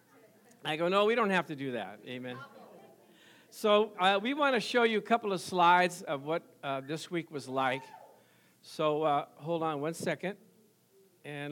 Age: 60-79